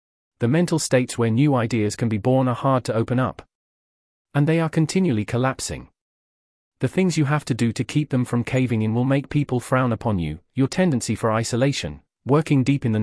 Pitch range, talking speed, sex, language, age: 110-140 Hz, 205 wpm, male, English, 40-59